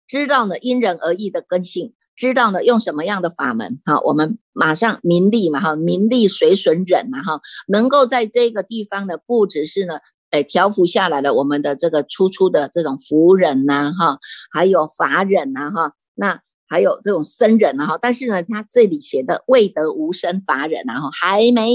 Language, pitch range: Chinese, 170-230 Hz